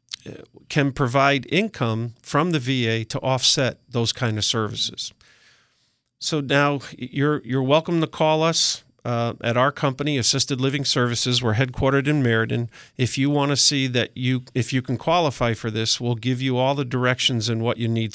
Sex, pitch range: male, 120-145 Hz